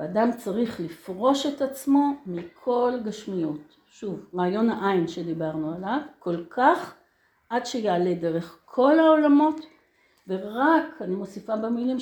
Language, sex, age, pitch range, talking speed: Hebrew, female, 60-79, 190-275 Hz, 115 wpm